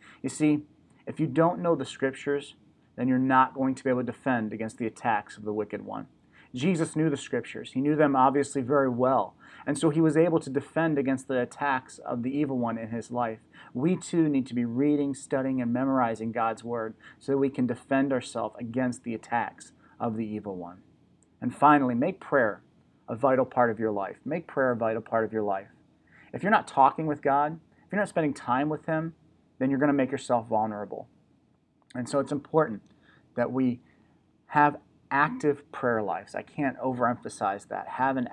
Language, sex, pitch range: English, male, 120-150 Hz